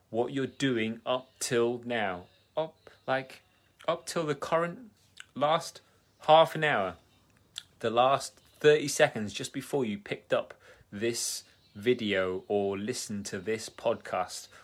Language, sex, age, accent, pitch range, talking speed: English, male, 30-49, British, 100-125 Hz, 130 wpm